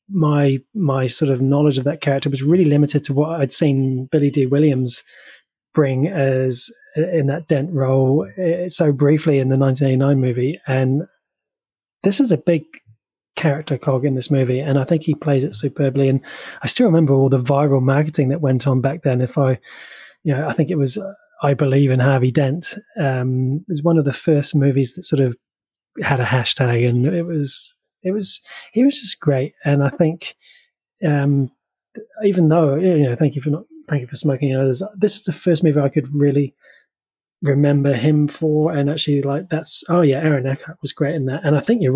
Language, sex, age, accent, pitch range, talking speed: English, male, 20-39, British, 135-165 Hz, 205 wpm